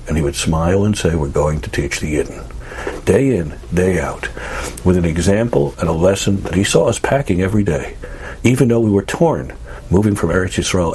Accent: American